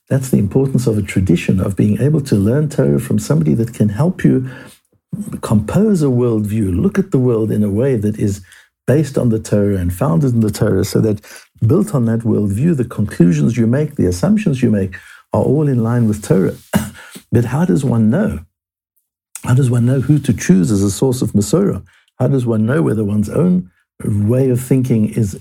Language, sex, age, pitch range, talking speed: English, male, 60-79, 105-135 Hz, 205 wpm